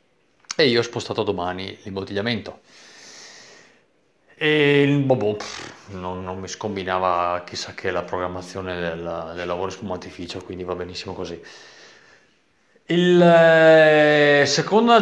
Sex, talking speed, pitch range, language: male, 110 wpm, 95-145 Hz, Italian